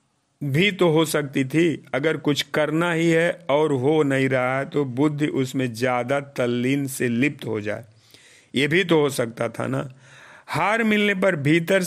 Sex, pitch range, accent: male, 130-180 Hz, native